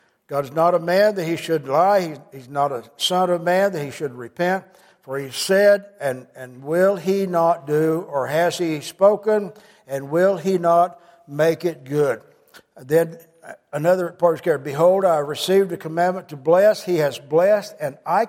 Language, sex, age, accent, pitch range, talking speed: English, male, 60-79, American, 160-210 Hz, 185 wpm